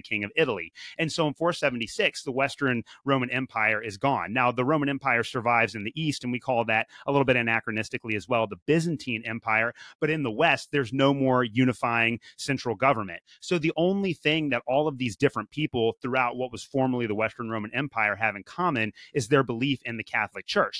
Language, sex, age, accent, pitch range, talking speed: English, male, 30-49, American, 115-140 Hz, 210 wpm